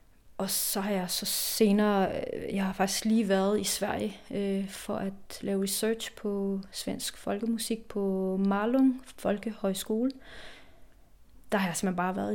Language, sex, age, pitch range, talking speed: Danish, female, 30-49, 195-220 Hz, 145 wpm